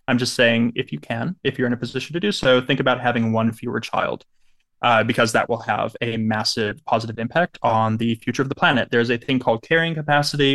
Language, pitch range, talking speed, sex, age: English, 115-145 Hz, 235 wpm, male, 20-39